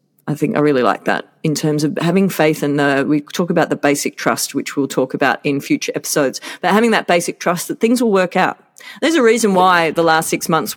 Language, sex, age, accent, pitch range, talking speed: English, female, 30-49, Australian, 155-225 Hz, 245 wpm